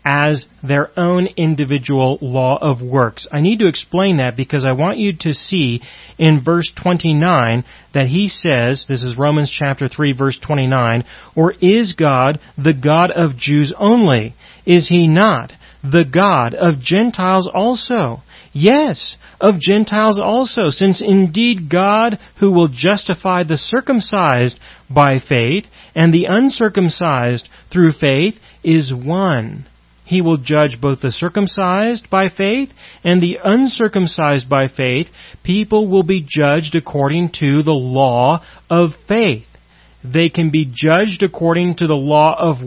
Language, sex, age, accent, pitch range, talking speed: English, male, 40-59, American, 145-195 Hz, 140 wpm